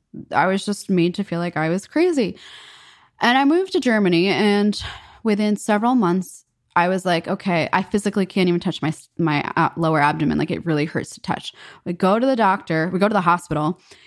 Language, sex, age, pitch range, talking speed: English, female, 20-39, 175-235 Hz, 205 wpm